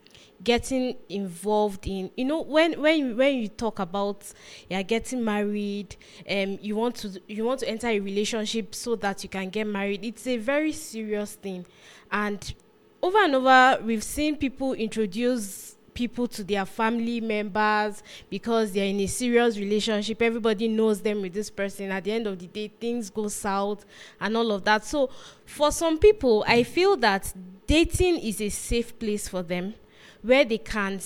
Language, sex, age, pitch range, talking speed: English, female, 20-39, 200-245 Hz, 175 wpm